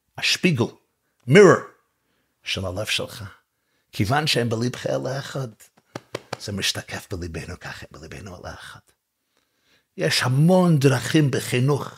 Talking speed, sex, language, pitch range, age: 110 wpm, male, Hebrew, 110-180 Hz, 50-69